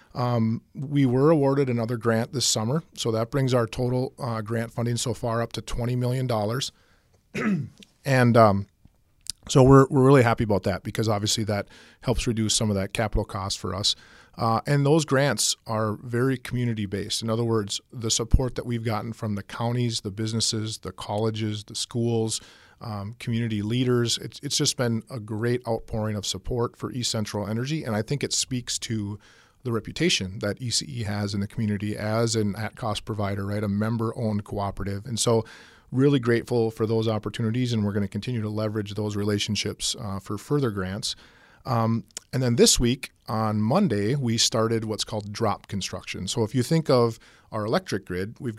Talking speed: 180 wpm